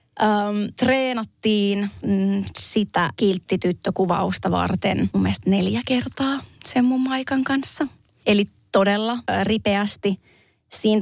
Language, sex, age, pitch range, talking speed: Finnish, female, 20-39, 190-230 Hz, 85 wpm